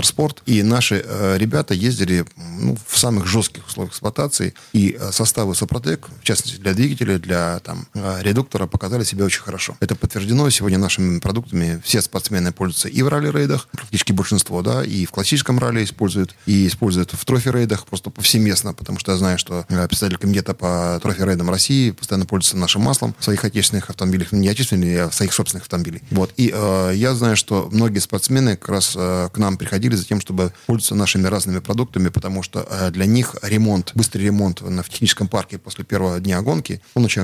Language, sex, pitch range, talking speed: Russian, male, 95-115 Hz, 190 wpm